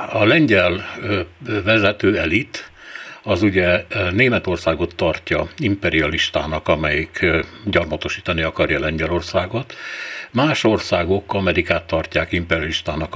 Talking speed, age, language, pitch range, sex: 80 wpm, 60-79, Hungarian, 85-100 Hz, male